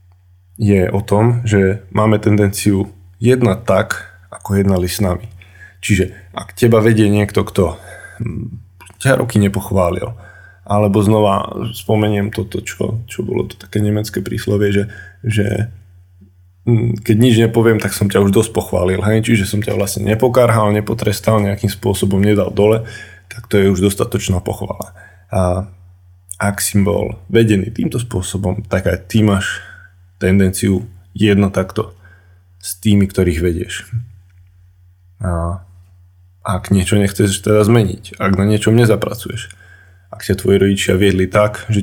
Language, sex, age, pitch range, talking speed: Slovak, male, 20-39, 90-105 Hz, 135 wpm